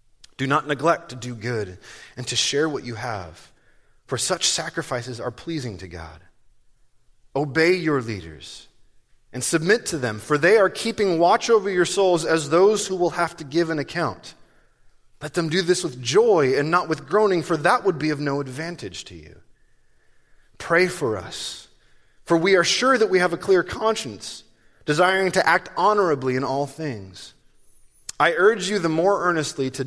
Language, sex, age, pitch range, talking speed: English, male, 30-49, 120-170 Hz, 180 wpm